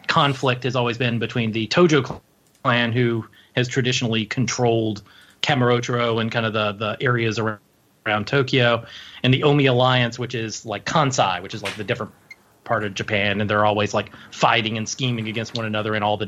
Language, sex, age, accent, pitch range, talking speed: English, male, 30-49, American, 110-135 Hz, 190 wpm